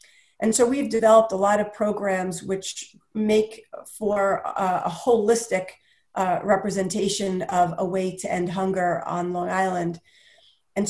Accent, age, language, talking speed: American, 40-59, English, 145 wpm